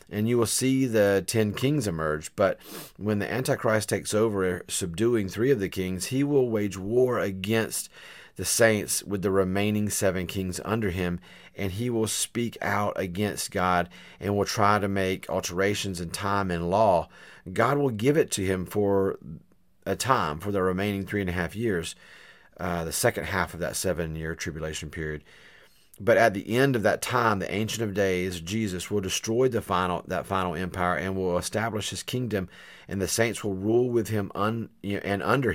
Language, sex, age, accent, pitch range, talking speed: English, male, 40-59, American, 90-110 Hz, 180 wpm